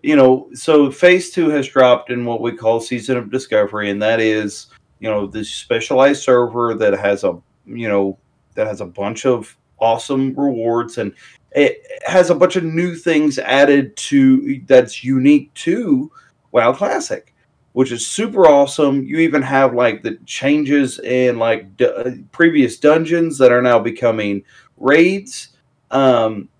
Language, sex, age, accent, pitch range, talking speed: English, male, 30-49, American, 120-165 Hz, 160 wpm